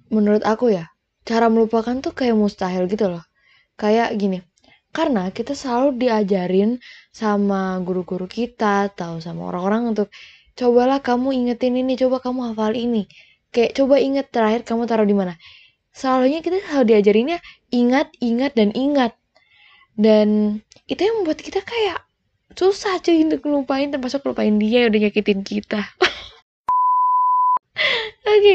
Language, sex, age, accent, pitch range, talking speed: Indonesian, female, 10-29, native, 210-270 Hz, 135 wpm